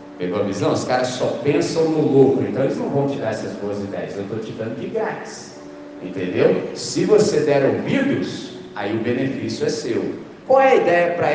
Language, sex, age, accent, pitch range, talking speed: Portuguese, male, 50-69, Brazilian, 135-215 Hz, 205 wpm